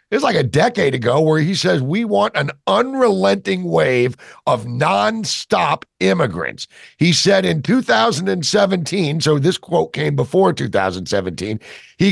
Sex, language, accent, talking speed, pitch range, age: male, English, American, 140 wpm, 140-215 Hz, 50-69